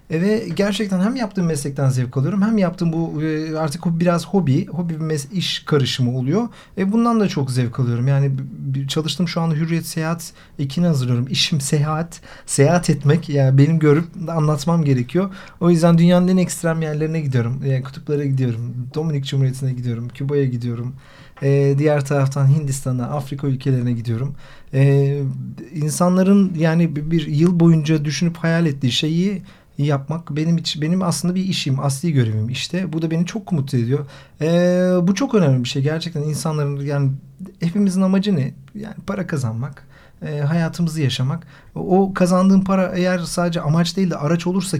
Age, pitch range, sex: 40-59, 140-175 Hz, male